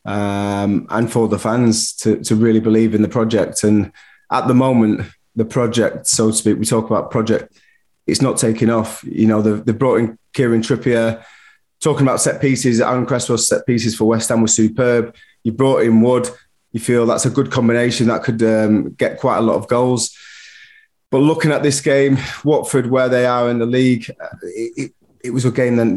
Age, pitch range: 20-39, 110-130 Hz